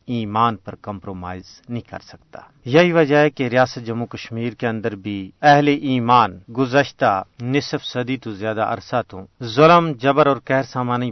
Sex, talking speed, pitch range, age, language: male, 160 wpm, 110-135 Hz, 40-59, Urdu